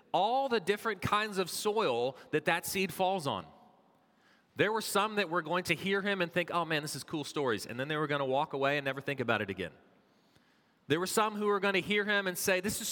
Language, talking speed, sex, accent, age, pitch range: English, 255 wpm, male, American, 30-49, 145-215 Hz